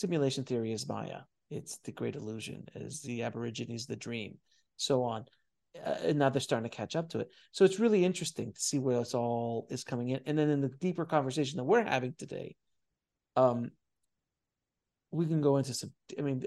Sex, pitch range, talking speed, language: male, 125-150 Hz, 200 wpm, English